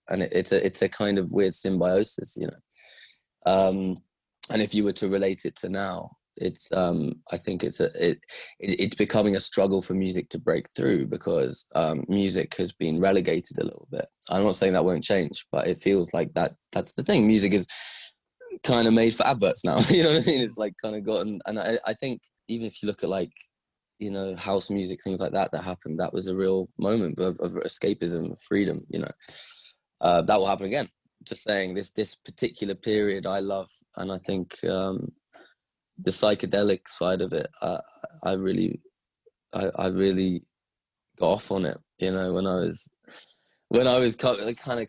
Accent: British